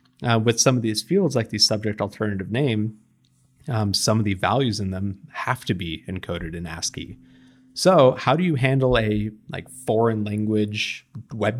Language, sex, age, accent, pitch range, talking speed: English, male, 20-39, American, 100-125 Hz, 175 wpm